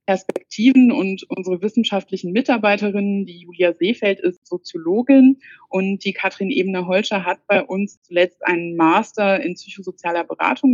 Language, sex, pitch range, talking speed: German, female, 175-205 Hz, 130 wpm